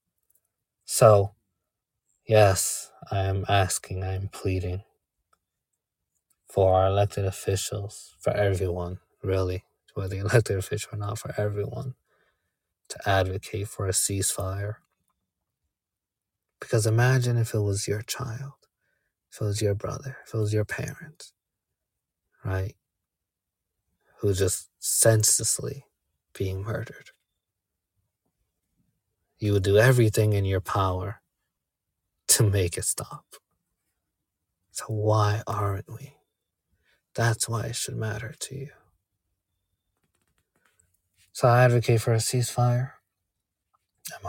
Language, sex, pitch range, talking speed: English, male, 95-110 Hz, 110 wpm